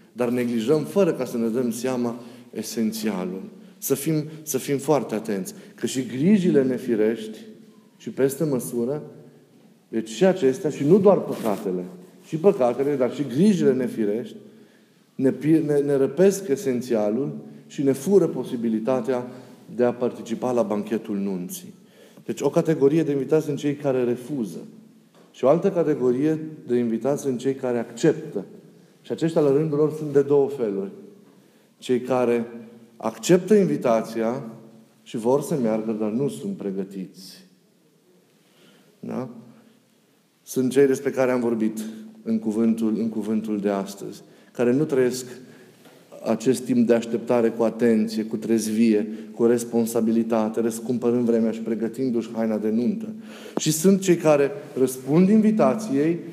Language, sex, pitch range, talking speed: Romanian, male, 115-155 Hz, 135 wpm